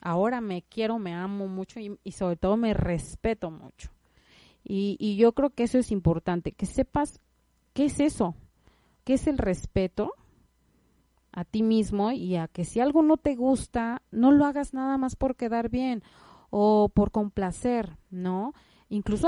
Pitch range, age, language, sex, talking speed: 180-225 Hz, 30-49, Spanish, female, 170 wpm